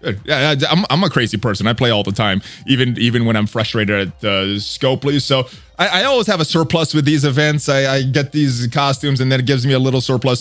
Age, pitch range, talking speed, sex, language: 20-39, 120-155 Hz, 250 wpm, male, English